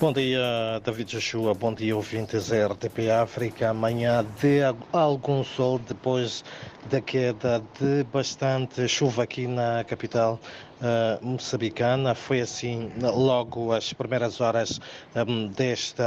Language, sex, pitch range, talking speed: Portuguese, male, 110-125 Hz, 125 wpm